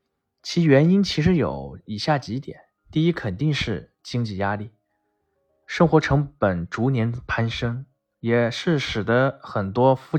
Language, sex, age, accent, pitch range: Chinese, male, 20-39, native, 100-140 Hz